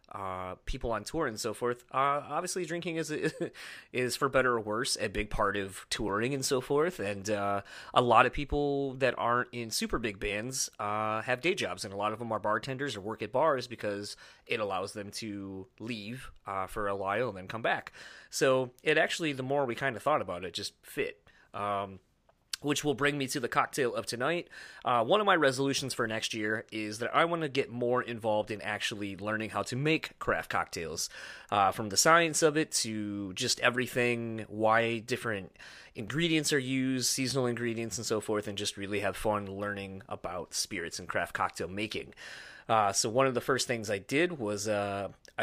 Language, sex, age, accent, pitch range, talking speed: English, male, 30-49, American, 105-135 Hz, 205 wpm